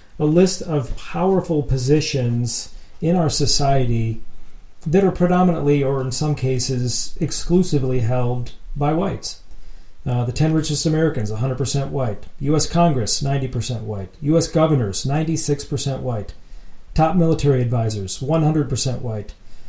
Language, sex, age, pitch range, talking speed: English, male, 40-59, 125-155 Hz, 120 wpm